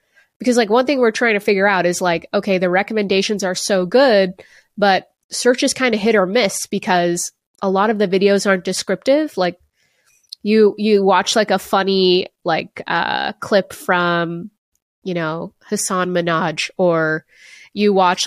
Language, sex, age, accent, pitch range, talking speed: English, female, 20-39, American, 185-240 Hz, 170 wpm